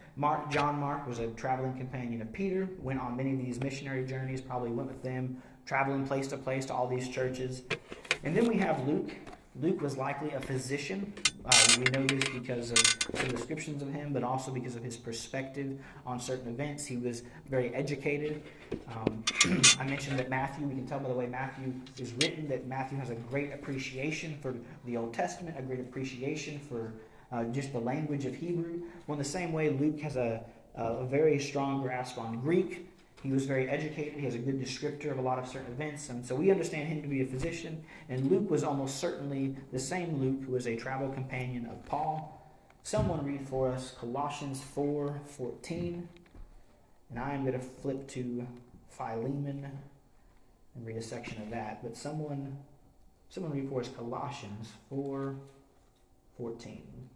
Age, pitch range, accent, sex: 30-49, 125-145 Hz, American, male